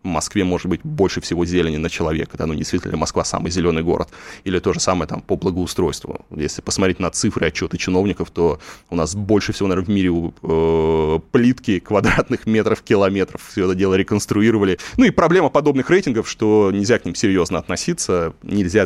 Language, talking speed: Russian, 180 wpm